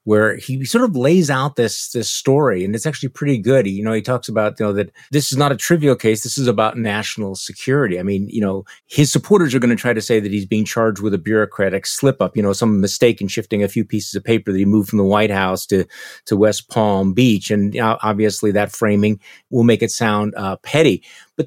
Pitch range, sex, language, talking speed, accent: 105-145 Hz, male, English, 255 wpm, American